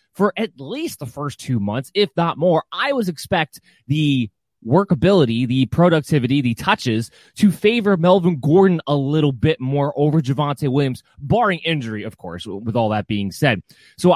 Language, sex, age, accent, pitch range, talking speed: English, male, 20-39, American, 125-180 Hz, 170 wpm